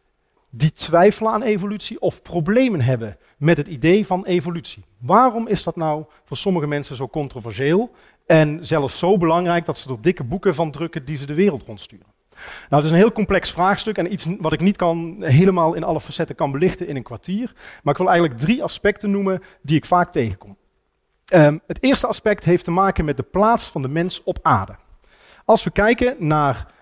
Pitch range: 140-185 Hz